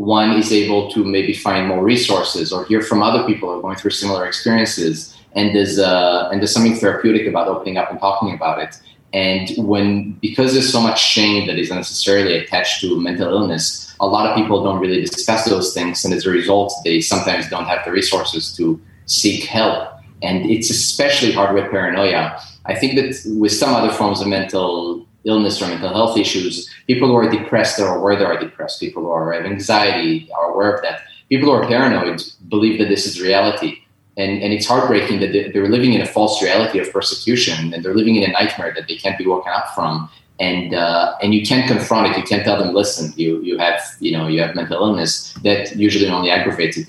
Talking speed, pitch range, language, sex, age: 215 wpm, 90-110 Hz, English, male, 30-49